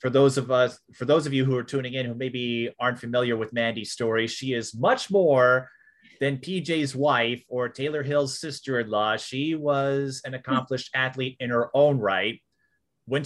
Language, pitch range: English, 115-140 Hz